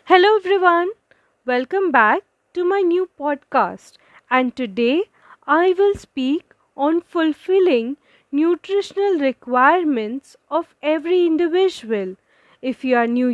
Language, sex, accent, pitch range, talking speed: English, female, Indian, 255-365 Hz, 110 wpm